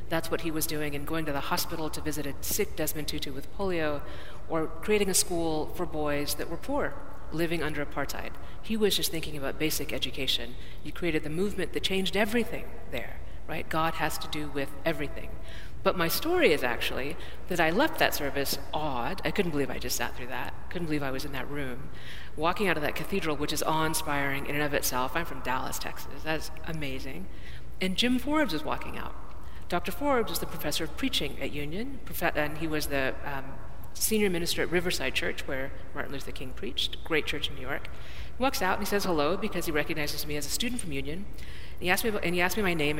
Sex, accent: female, American